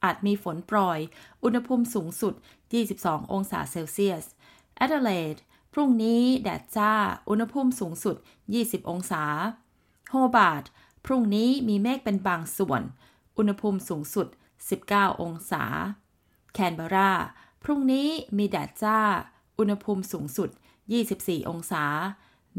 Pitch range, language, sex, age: 185-235 Hz, Thai, female, 20-39